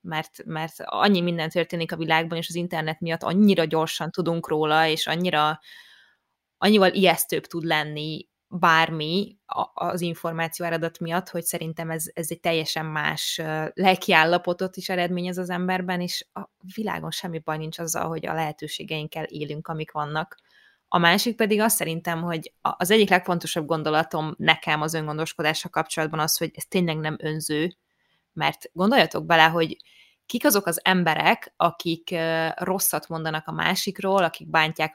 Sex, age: female, 20-39